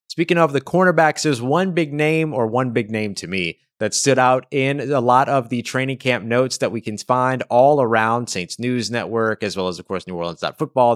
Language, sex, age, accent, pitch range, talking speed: English, male, 20-39, American, 110-135 Hz, 225 wpm